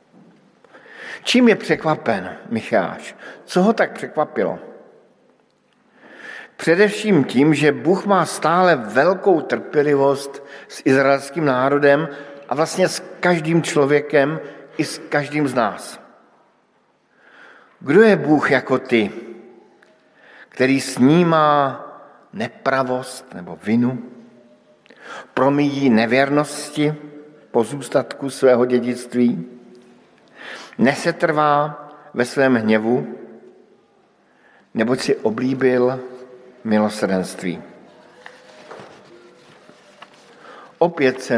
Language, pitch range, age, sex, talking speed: Slovak, 125-170 Hz, 50-69, male, 80 wpm